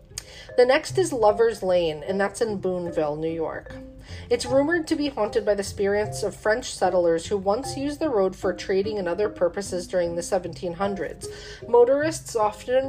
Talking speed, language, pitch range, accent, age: 170 wpm, English, 180-240 Hz, American, 40-59